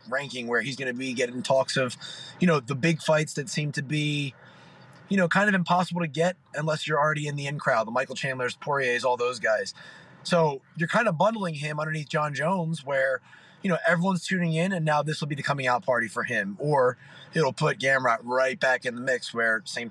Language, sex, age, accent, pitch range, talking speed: English, male, 20-39, American, 130-175 Hz, 230 wpm